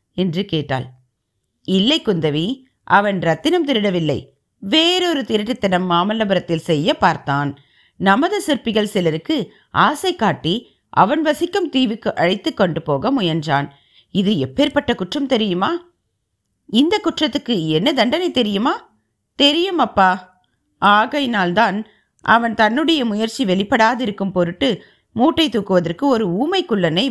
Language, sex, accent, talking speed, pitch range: Tamil, female, native, 95 wpm, 165-275 Hz